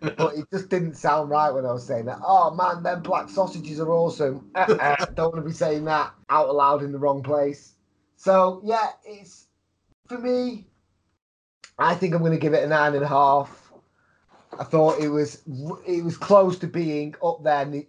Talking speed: 200 wpm